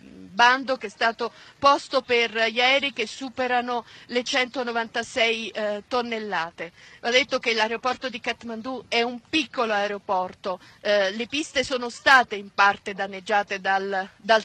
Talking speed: 135 wpm